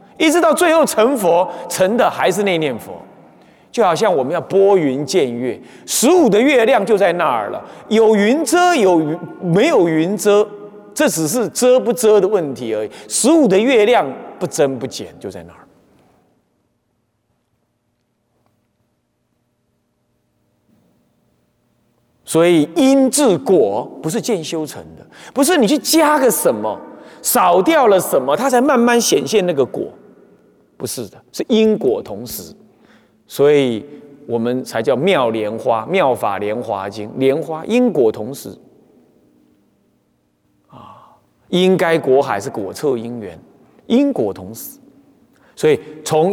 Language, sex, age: Chinese, male, 30-49